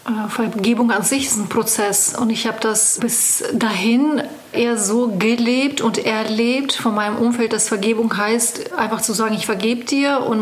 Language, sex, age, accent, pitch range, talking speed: German, female, 30-49, German, 215-240 Hz, 175 wpm